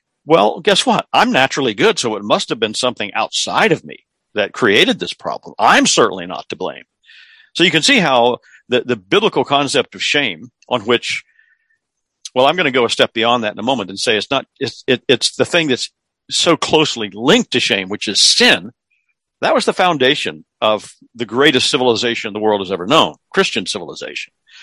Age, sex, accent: 50-69, male, American